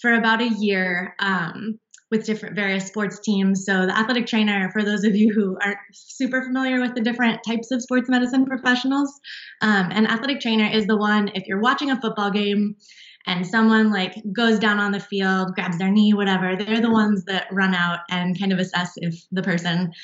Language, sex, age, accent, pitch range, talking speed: English, female, 20-39, American, 185-220 Hz, 205 wpm